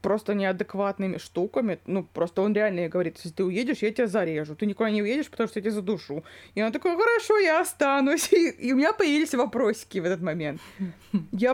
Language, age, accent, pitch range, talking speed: Russian, 20-39, native, 200-260 Hz, 210 wpm